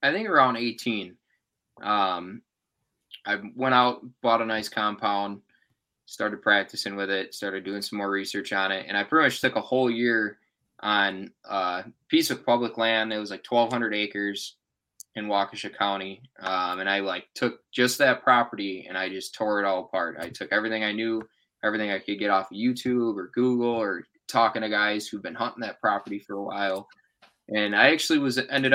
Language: English